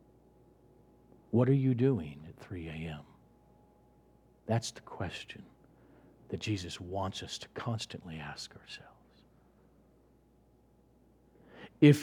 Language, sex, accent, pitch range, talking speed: English, male, American, 95-150 Hz, 95 wpm